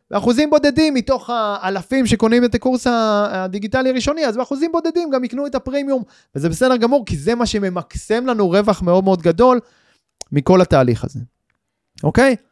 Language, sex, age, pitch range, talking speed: Hebrew, male, 20-39, 175-245 Hz, 155 wpm